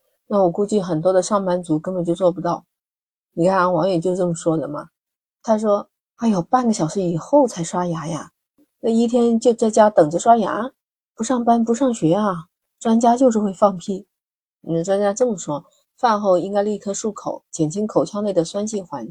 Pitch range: 170-215 Hz